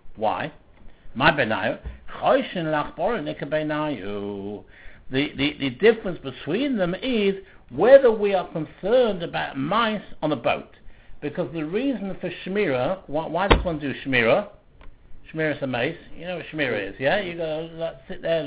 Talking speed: 150 wpm